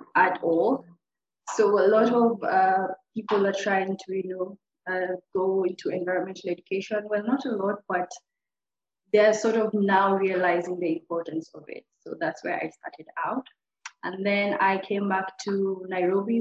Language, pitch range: English, 180-210 Hz